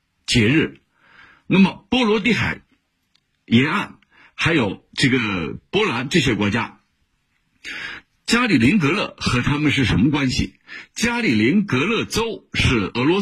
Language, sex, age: Chinese, male, 50-69